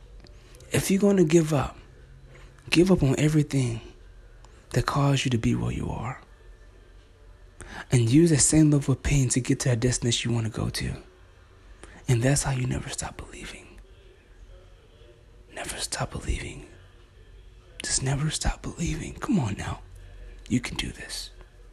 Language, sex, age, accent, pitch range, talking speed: English, male, 30-49, American, 105-145 Hz, 155 wpm